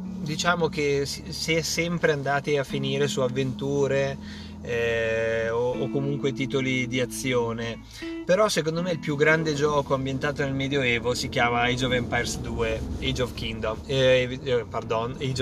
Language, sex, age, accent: Italian, male, 20-39, native